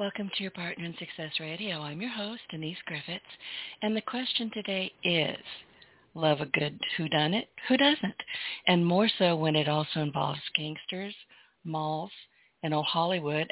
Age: 50-69